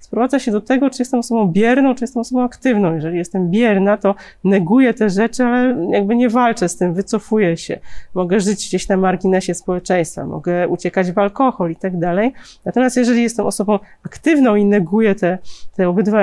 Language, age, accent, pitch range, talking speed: Polish, 30-49, native, 185-240 Hz, 185 wpm